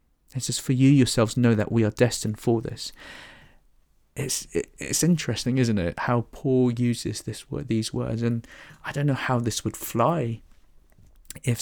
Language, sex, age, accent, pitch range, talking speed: English, male, 20-39, British, 110-130 Hz, 170 wpm